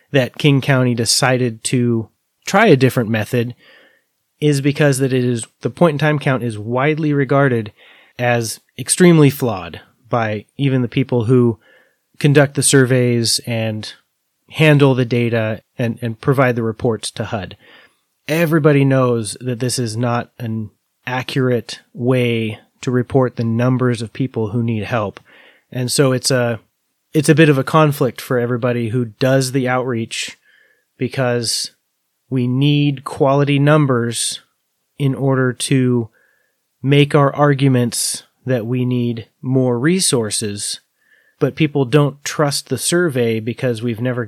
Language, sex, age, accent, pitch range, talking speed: English, male, 30-49, American, 120-140 Hz, 140 wpm